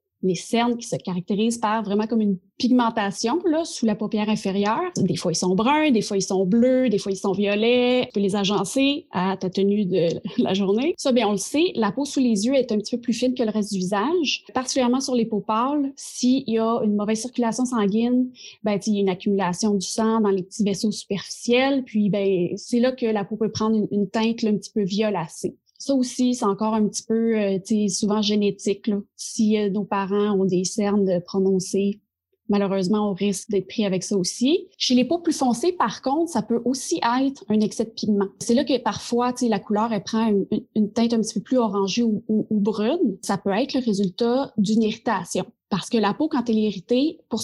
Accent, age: Canadian, 20-39